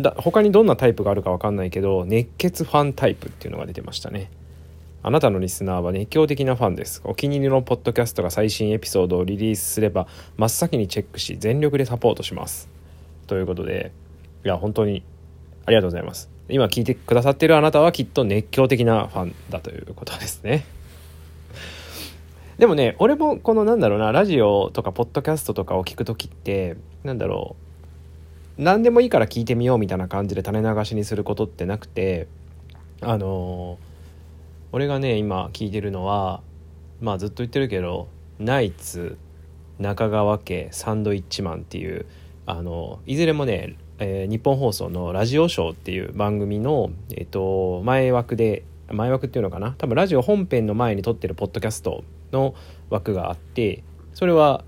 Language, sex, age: Japanese, male, 20-39